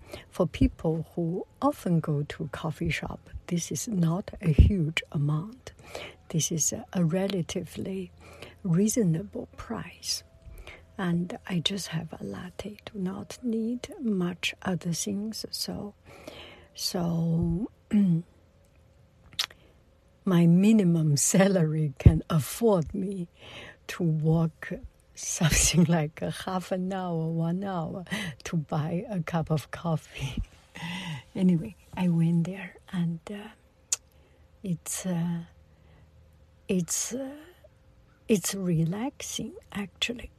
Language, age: English, 60-79